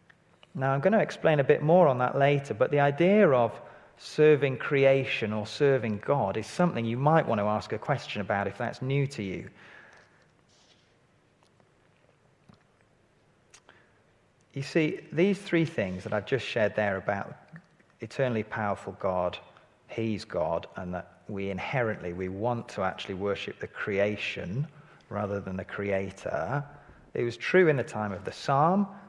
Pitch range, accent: 100-150 Hz, British